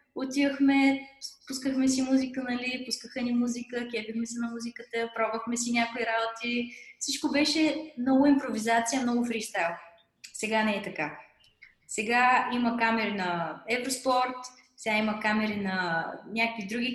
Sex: female